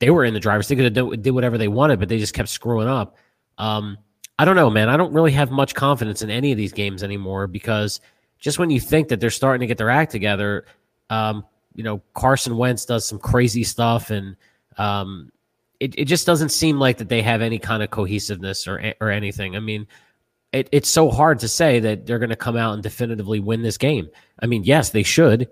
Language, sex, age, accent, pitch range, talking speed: English, male, 30-49, American, 105-135 Hz, 230 wpm